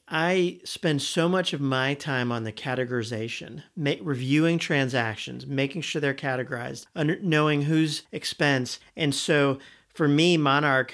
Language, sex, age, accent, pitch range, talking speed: English, male, 40-59, American, 130-160 Hz, 145 wpm